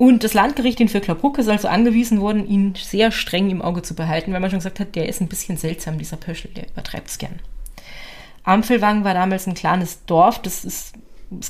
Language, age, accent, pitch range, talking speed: German, 30-49, German, 175-220 Hz, 215 wpm